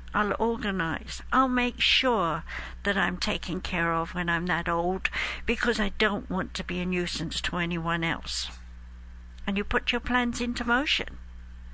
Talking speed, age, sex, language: 165 wpm, 60-79, female, English